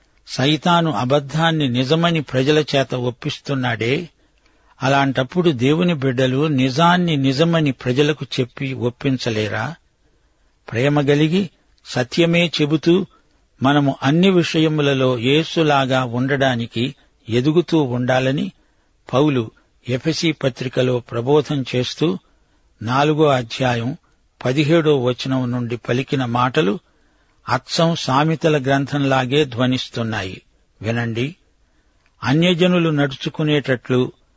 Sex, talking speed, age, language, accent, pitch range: male, 75 wpm, 60-79, Telugu, native, 125-155 Hz